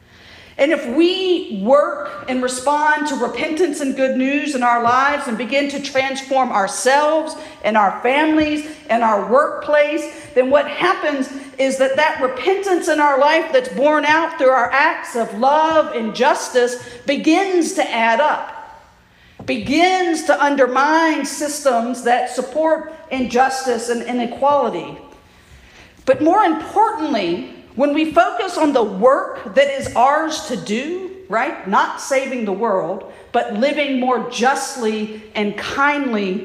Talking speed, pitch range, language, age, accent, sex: 135 wpm, 255-315 Hz, English, 50-69, American, female